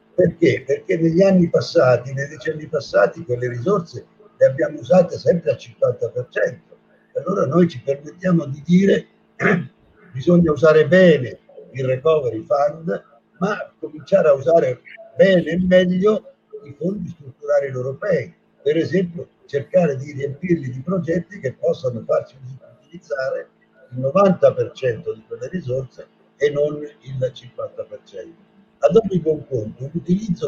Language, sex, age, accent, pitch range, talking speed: Italian, male, 60-79, native, 140-195 Hz, 130 wpm